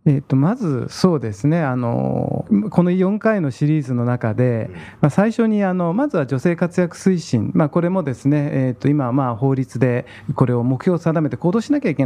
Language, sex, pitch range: Japanese, male, 120-175 Hz